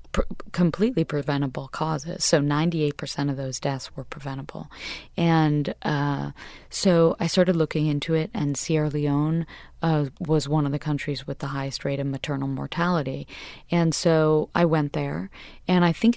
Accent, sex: American, female